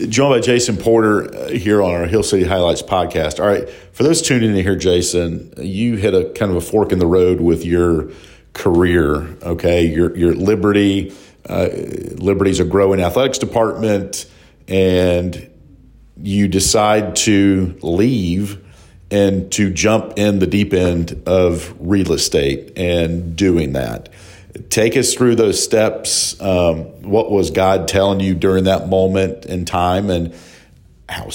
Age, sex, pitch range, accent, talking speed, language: 50-69, male, 90-105 Hz, American, 150 wpm, English